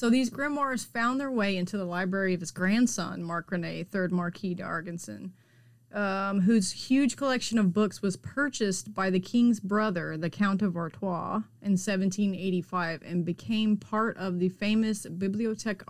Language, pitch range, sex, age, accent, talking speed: English, 170-210 Hz, female, 30-49, American, 155 wpm